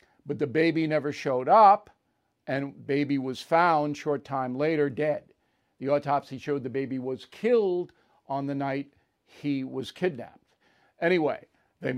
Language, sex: English, male